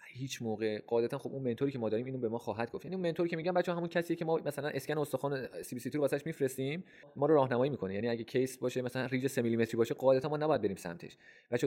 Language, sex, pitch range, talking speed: Persian, male, 110-135 Hz, 245 wpm